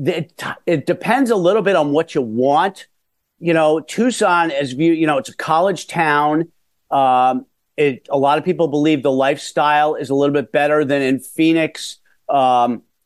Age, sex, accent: 50-69, male, American